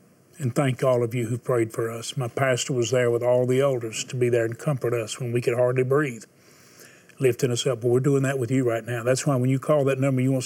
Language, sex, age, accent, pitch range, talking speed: English, male, 40-59, American, 120-135 Hz, 280 wpm